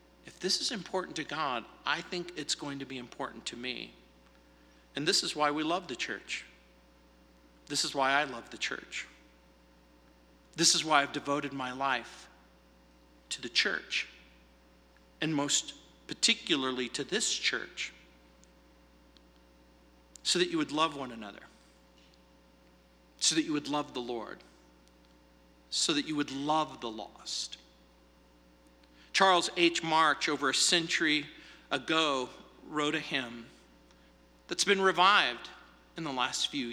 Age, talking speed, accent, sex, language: 50-69, 135 wpm, American, male, English